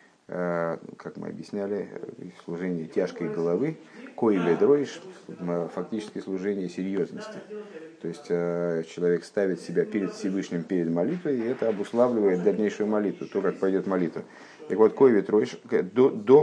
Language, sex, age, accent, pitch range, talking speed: Russian, male, 50-69, native, 95-155 Hz, 125 wpm